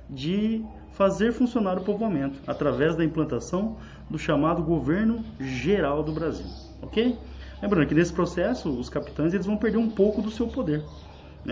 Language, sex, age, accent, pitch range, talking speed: Portuguese, male, 20-39, Brazilian, 145-200 Hz, 155 wpm